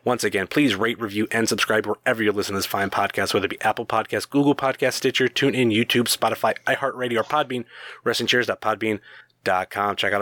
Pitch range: 110-130 Hz